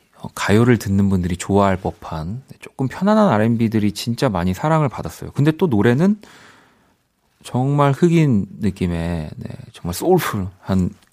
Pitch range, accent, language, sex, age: 90-125 Hz, native, Korean, male, 40-59